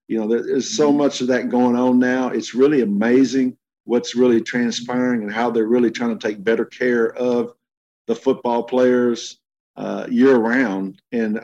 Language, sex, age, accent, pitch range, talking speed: English, male, 50-69, American, 110-125 Hz, 175 wpm